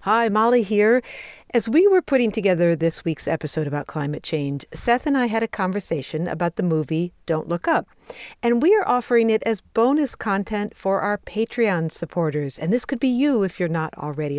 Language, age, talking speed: English, 50-69, 195 wpm